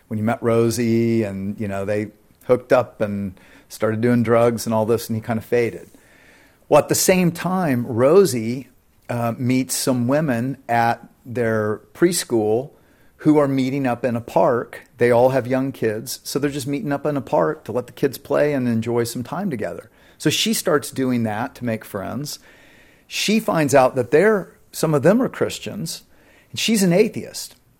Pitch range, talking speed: 115-150 Hz, 190 wpm